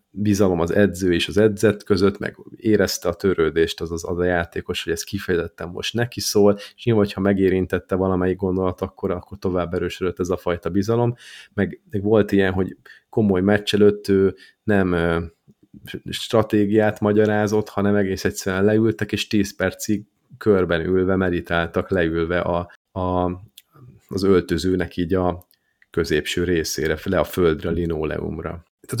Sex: male